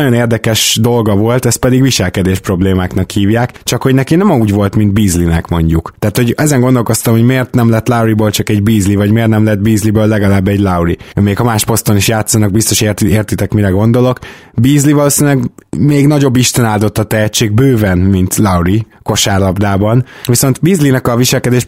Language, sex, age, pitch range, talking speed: Hungarian, male, 20-39, 100-125 Hz, 180 wpm